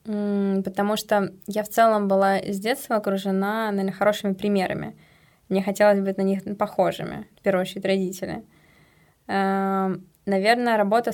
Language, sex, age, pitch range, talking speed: Russian, female, 20-39, 190-215 Hz, 125 wpm